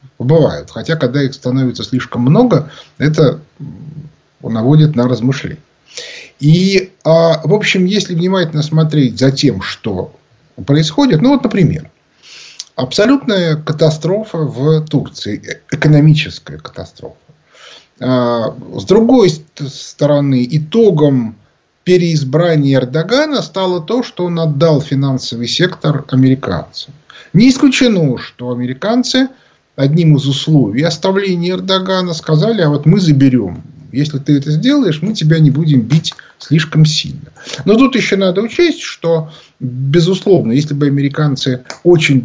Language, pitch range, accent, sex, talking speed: Russian, 135-180 Hz, native, male, 115 wpm